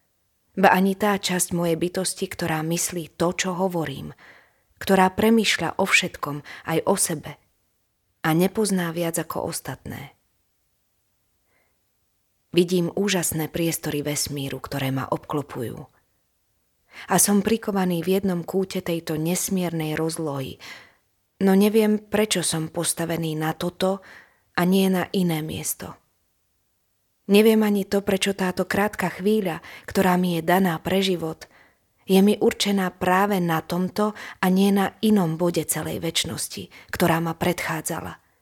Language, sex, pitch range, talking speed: Slovak, female, 150-190 Hz, 125 wpm